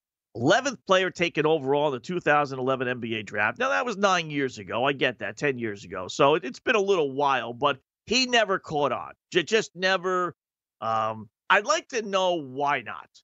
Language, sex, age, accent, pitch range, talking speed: English, male, 40-59, American, 135-180 Hz, 185 wpm